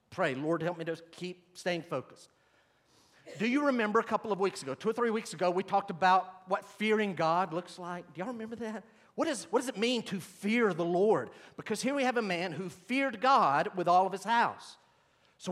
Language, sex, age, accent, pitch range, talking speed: English, male, 50-69, American, 175-230 Hz, 225 wpm